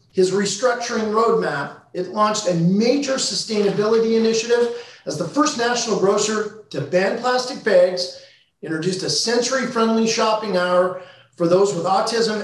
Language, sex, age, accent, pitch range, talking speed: English, male, 40-59, American, 165-215 Hz, 130 wpm